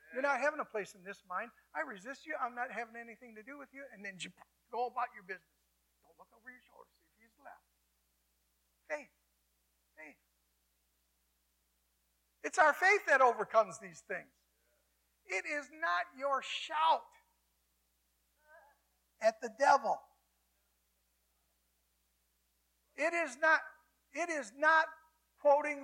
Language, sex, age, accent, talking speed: English, male, 50-69, American, 135 wpm